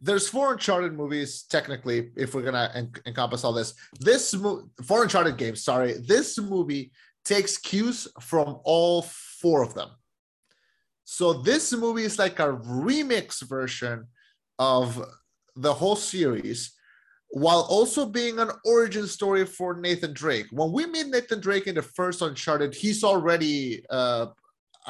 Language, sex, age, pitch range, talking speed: English, male, 30-49, 130-185 Hz, 145 wpm